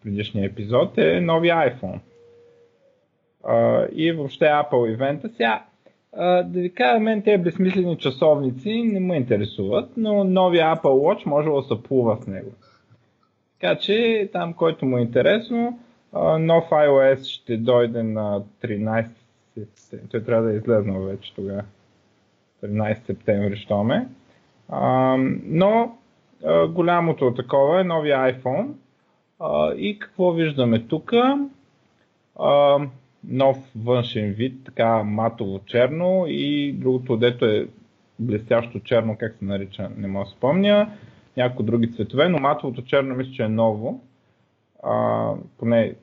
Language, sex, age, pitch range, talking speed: Bulgarian, male, 30-49, 110-165 Hz, 135 wpm